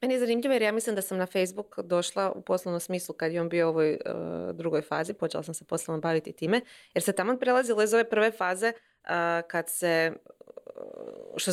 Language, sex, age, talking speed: Croatian, female, 30-49, 205 wpm